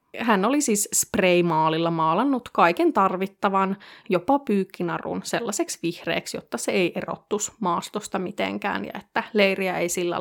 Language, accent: Finnish, native